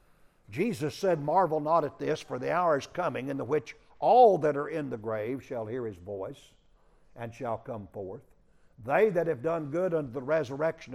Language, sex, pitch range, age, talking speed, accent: English, male, 120-160 Hz, 60-79, 190 wpm, American